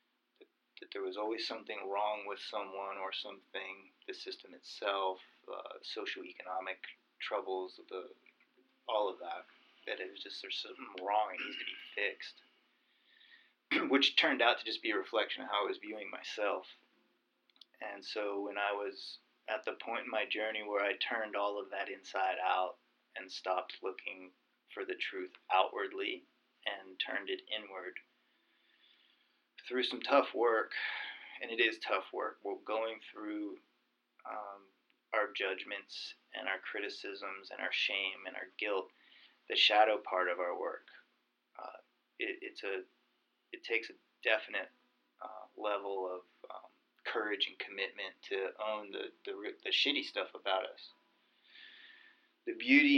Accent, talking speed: American, 150 wpm